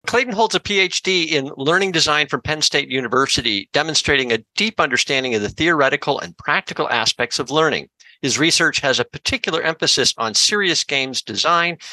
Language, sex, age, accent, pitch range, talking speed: English, male, 50-69, American, 130-175 Hz, 165 wpm